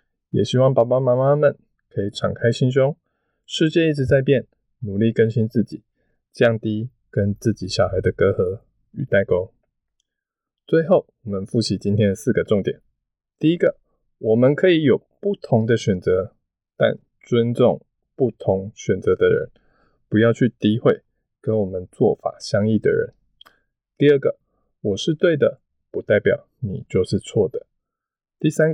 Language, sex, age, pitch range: Chinese, male, 20-39, 105-140 Hz